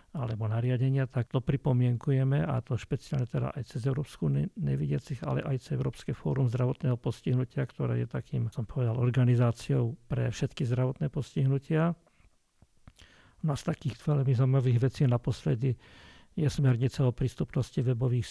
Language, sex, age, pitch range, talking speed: Slovak, male, 50-69, 120-140 Hz, 140 wpm